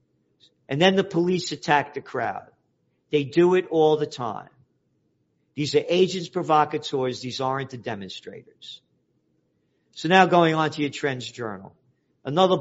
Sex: male